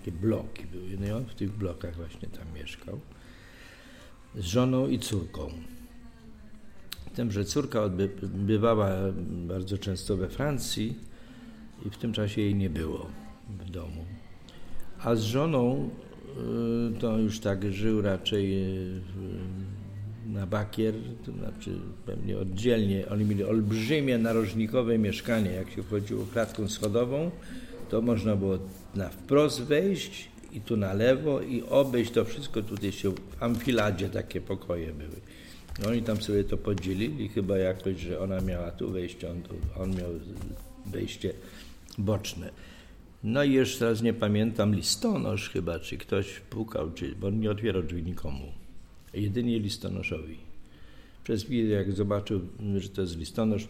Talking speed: 140 wpm